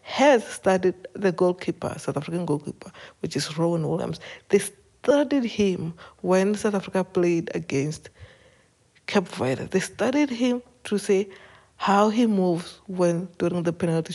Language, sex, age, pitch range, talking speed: English, female, 60-79, 175-215 Hz, 140 wpm